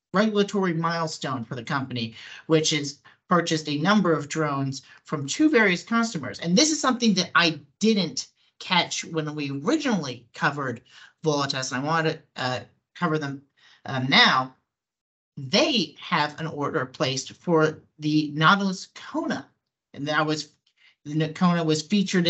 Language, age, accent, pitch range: English, 40-59, American, 145-175 Hz